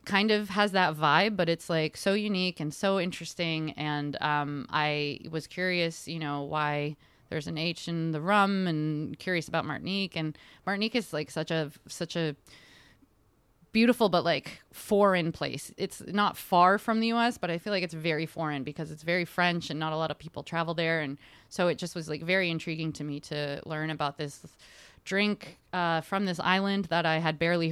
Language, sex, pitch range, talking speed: English, female, 150-175 Hz, 200 wpm